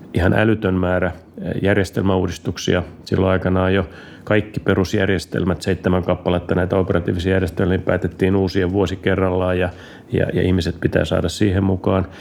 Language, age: Finnish, 30-49